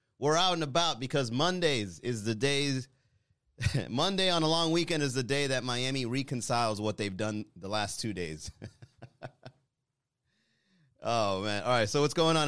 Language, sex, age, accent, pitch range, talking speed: English, male, 30-49, American, 95-130 Hz, 170 wpm